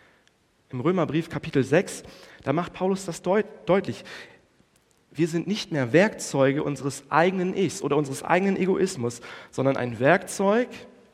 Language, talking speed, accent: German, 130 wpm, German